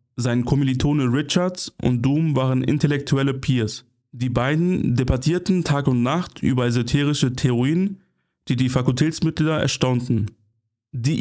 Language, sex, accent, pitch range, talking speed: German, male, German, 125-145 Hz, 120 wpm